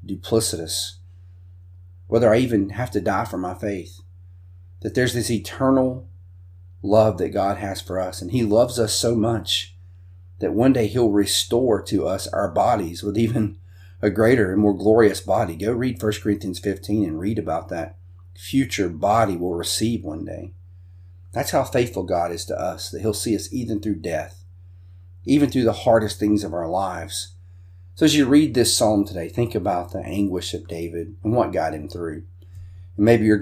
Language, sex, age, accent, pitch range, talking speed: English, male, 40-59, American, 90-105 Hz, 180 wpm